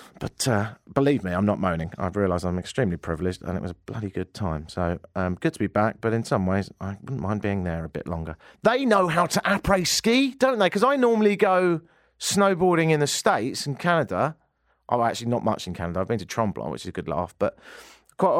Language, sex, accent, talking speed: English, male, British, 235 wpm